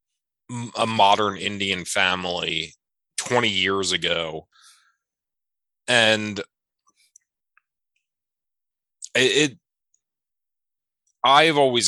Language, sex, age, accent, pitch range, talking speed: English, male, 20-39, American, 90-115 Hz, 55 wpm